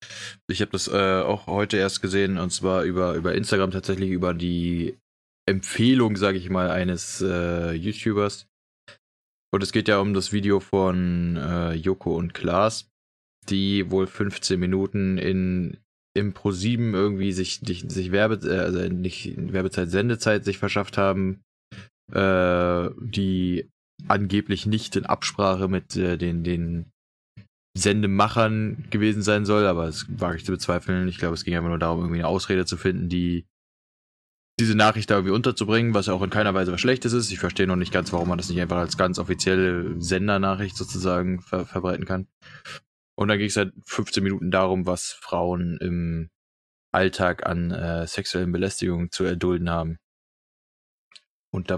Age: 20-39